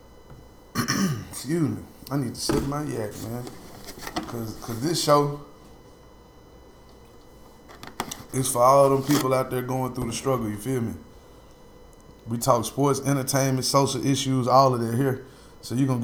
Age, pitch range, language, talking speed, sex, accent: 20-39, 115-135 Hz, English, 150 wpm, male, American